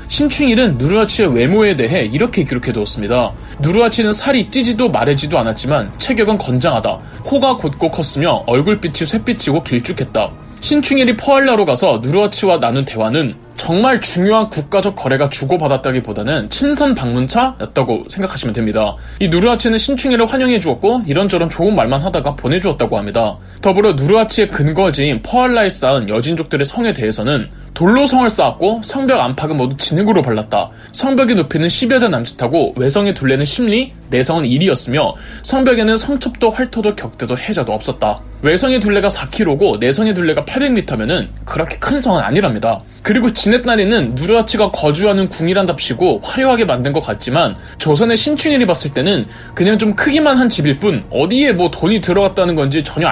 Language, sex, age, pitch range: Korean, male, 20-39, 140-235 Hz